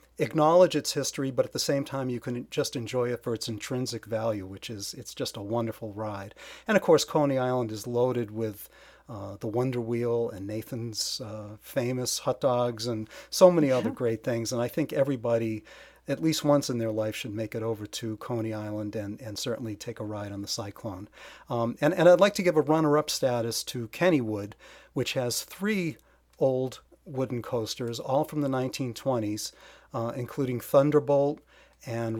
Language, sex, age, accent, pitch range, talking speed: English, male, 40-59, American, 115-140 Hz, 185 wpm